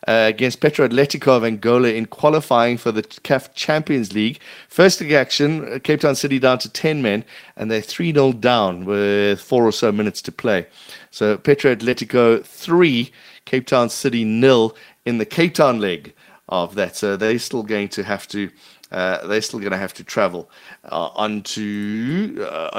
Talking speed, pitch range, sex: 180 wpm, 105-140 Hz, male